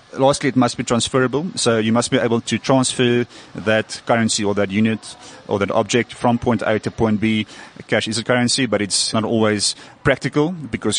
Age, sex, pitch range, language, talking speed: 30-49, male, 105-130 Hz, English, 195 wpm